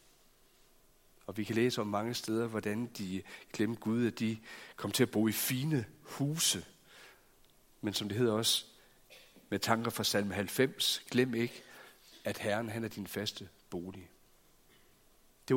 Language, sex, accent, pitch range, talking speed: Danish, male, native, 105-125 Hz, 155 wpm